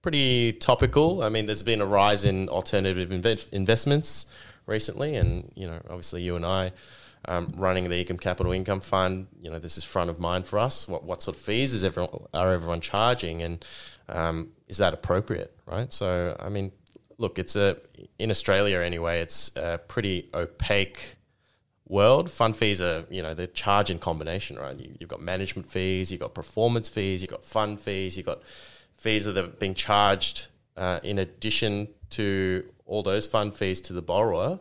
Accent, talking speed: Australian, 185 wpm